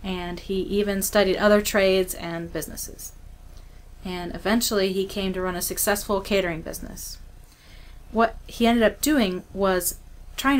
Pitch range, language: 180-210 Hz, English